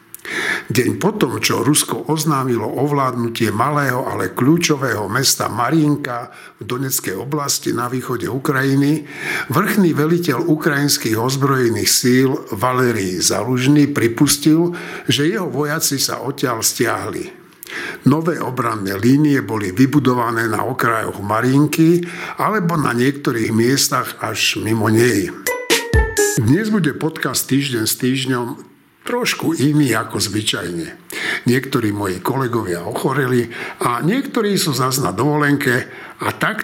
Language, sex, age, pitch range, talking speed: Slovak, male, 60-79, 115-150 Hz, 110 wpm